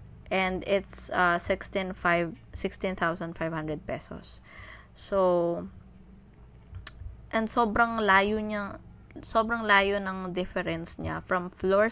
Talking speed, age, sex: 110 wpm, 20-39, female